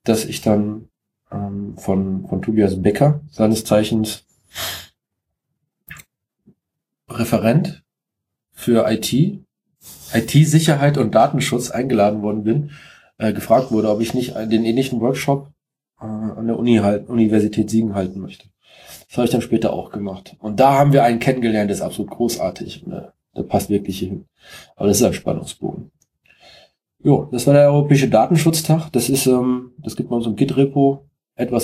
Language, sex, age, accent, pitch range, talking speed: German, male, 20-39, German, 110-140 Hz, 155 wpm